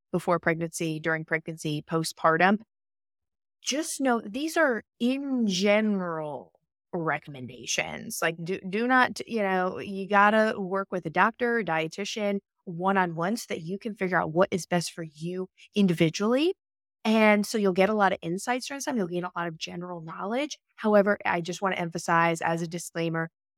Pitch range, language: 165-205 Hz, English